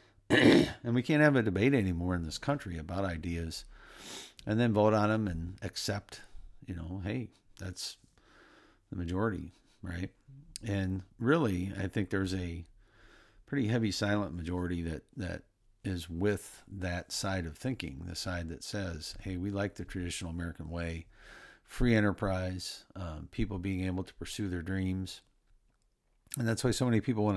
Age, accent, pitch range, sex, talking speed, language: 50-69, American, 90-110 Hz, male, 160 wpm, English